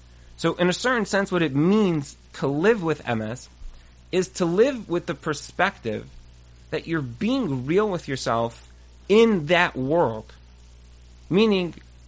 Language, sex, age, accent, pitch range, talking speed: English, male, 30-49, American, 135-195 Hz, 140 wpm